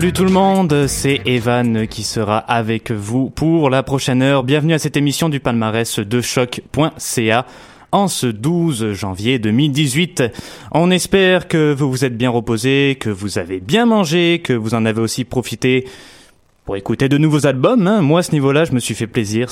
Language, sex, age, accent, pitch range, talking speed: French, male, 20-39, French, 110-145 Hz, 185 wpm